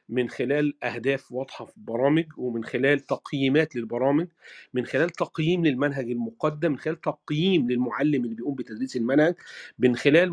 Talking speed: 145 wpm